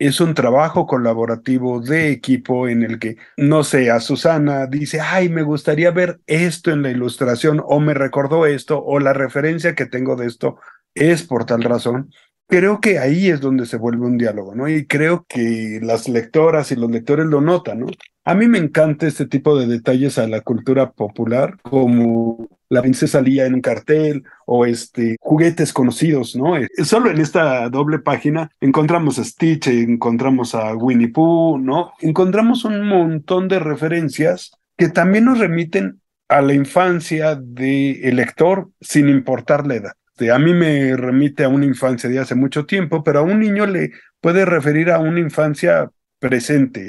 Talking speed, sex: 175 wpm, male